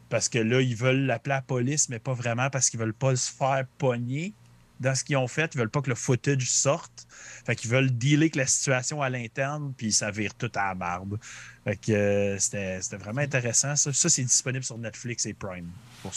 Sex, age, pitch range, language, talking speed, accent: male, 30-49, 110-135 Hz, French, 220 wpm, Canadian